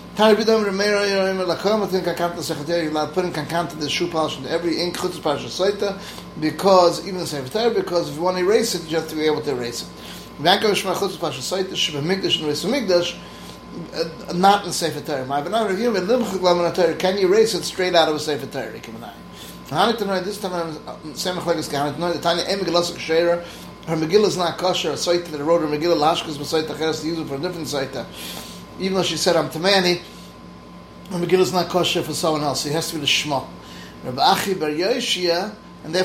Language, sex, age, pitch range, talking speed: English, male, 30-49, 150-185 Hz, 80 wpm